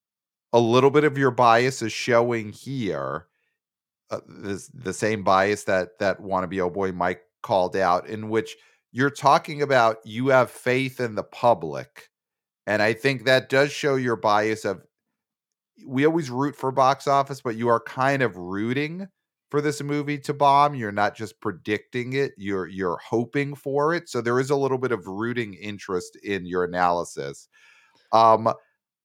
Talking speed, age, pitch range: 165 wpm, 40-59, 95-135 Hz